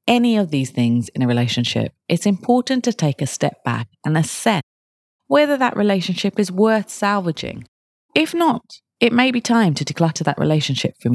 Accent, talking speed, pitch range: British, 180 wpm, 135-205 Hz